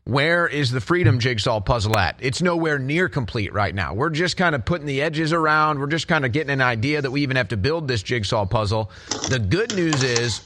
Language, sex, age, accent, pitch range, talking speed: English, male, 30-49, American, 120-160 Hz, 235 wpm